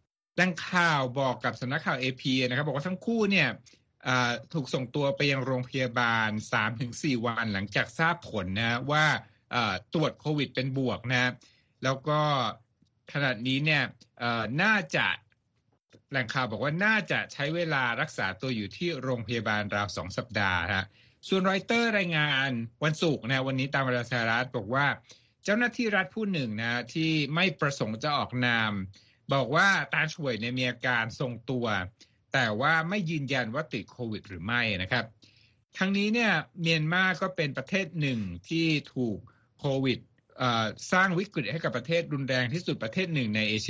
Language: Thai